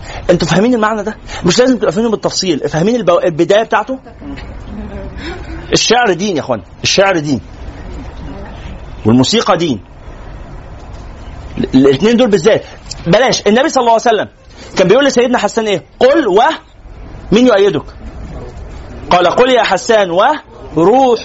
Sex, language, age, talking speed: male, Arabic, 40-59, 120 wpm